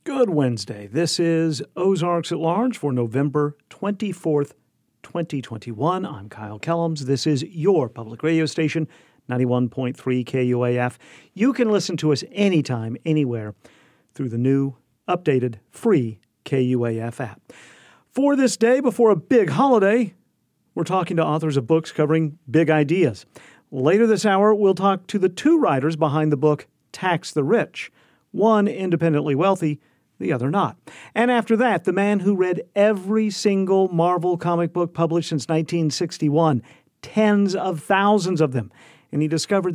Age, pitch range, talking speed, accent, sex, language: 50-69, 135-190 Hz, 145 wpm, American, male, English